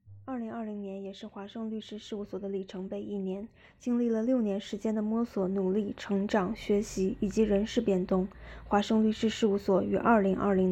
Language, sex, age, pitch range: Chinese, female, 20-39, 195-225 Hz